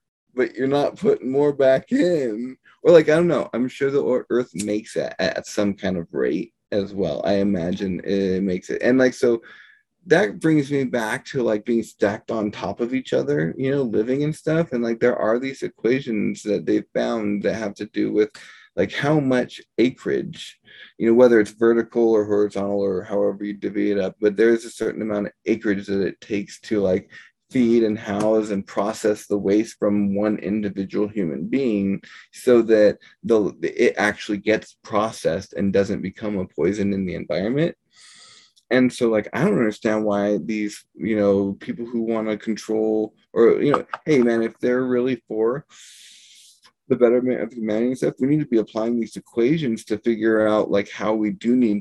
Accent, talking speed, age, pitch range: American, 190 wpm, 20-39, 100-120 Hz